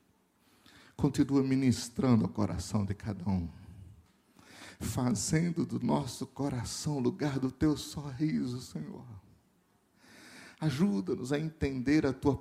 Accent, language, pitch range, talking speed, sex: Brazilian, Portuguese, 110-145 Hz, 100 wpm, male